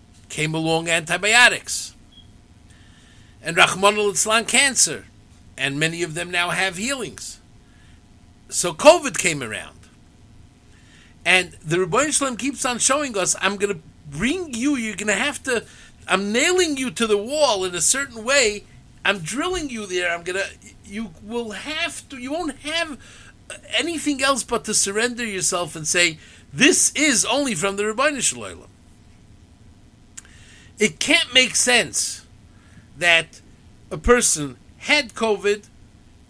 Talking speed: 140 wpm